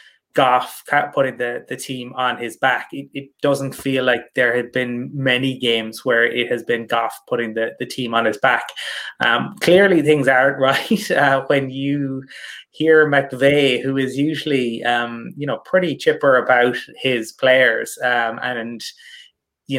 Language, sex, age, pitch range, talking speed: English, male, 20-39, 120-145 Hz, 165 wpm